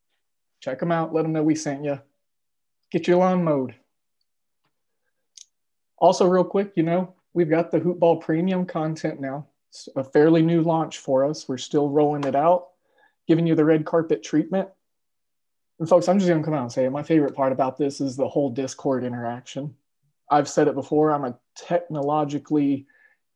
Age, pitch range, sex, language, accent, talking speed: 30-49, 140-165 Hz, male, English, American, 180 wpm